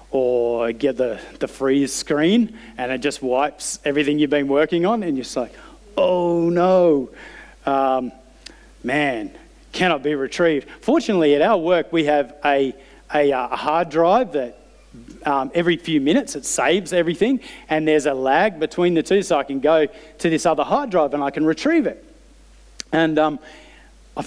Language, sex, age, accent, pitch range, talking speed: English, male, 40-59, Australian, 145-200 Hz, 170 wpm